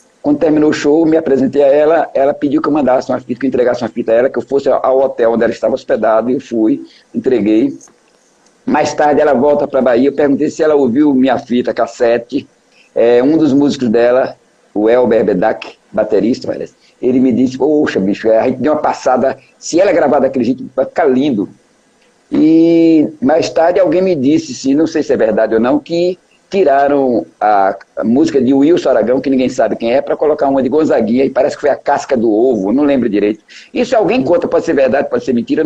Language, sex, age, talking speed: Portuguese, male, 60-79, 215 wpm